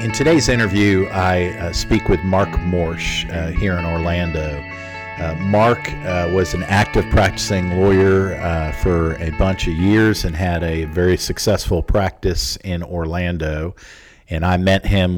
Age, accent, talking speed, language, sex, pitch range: 50-69, American, 150 wpm, English, male, 85-95 Hz